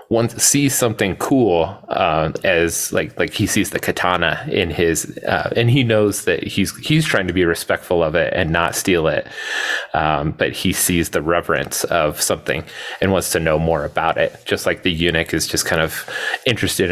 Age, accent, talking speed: 30-49, American, 195 wpm